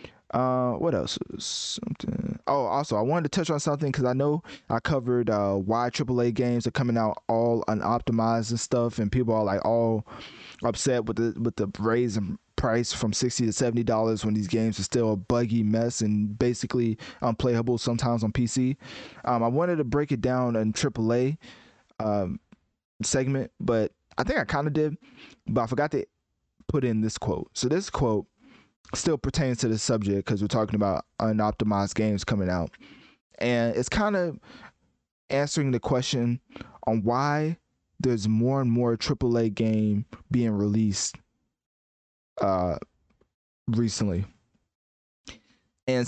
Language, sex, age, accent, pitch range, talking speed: English, male, 20-39, American, 110-130 Hz, 165 wpm